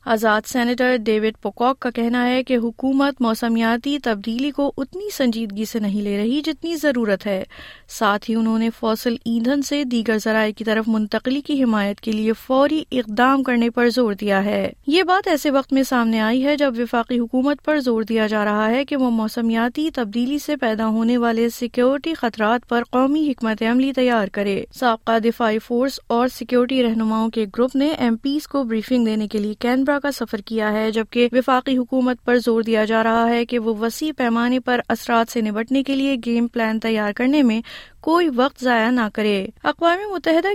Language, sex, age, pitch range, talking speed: Urdu, female, 20-39, 225-265 Hz, 190 wpm